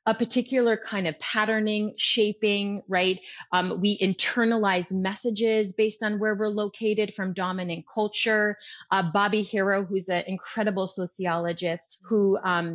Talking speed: 130 wpm